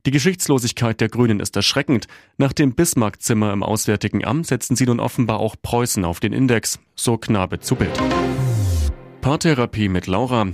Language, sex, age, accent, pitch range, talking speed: German, male, 30-49, German, 95-125 Hz, 160 wpm